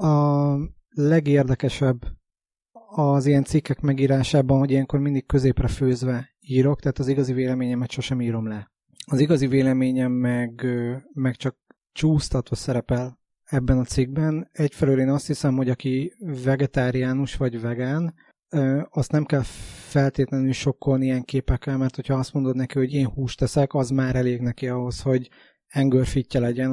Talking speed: 140 wpm